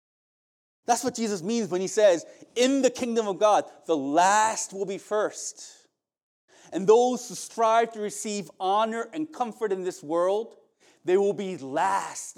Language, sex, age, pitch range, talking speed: English, male, 30-49, 190-250 Hz, 160 wpm